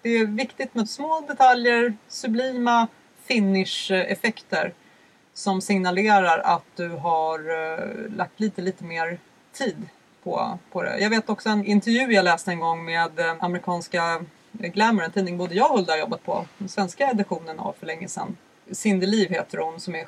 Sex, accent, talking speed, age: female, Swedish, 155 wpm, 30-49